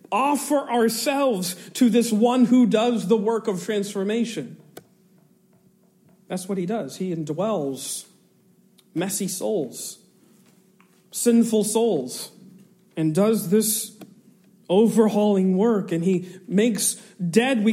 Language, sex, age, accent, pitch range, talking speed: English, male, 40-59, American, 190-235 Hz, 105 wpm